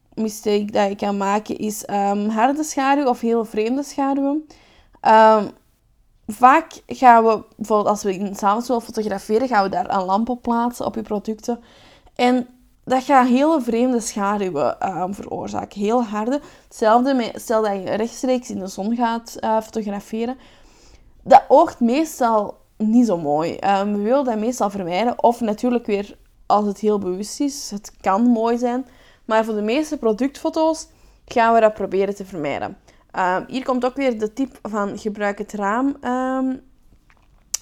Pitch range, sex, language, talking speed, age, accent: 210-250 Hz, female, Dutch, 165 wpm, 20-39, Dutch